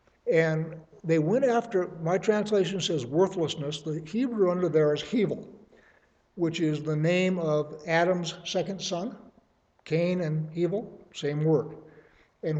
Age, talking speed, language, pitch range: 60-79, 135 wpm, English, 155-200 Hz